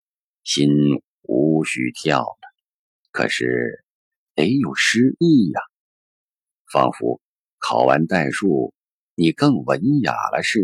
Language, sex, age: Chinese, male, 50-69